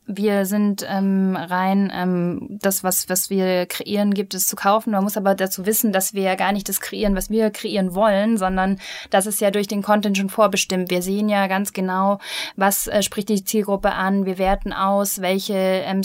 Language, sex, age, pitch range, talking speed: German, female, 10-29, 185-205 Hz, 200 wpm